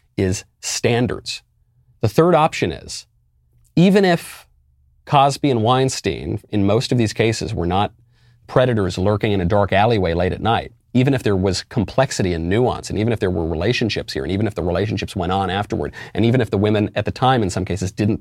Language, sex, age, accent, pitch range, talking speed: English, male, 40-59, American, 105-130 Hz, 200 wpm